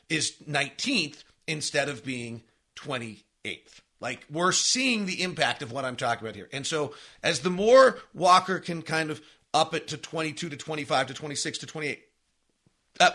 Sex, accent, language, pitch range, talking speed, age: male, American, English, 130-170 Hz, 170 wpm, 40-59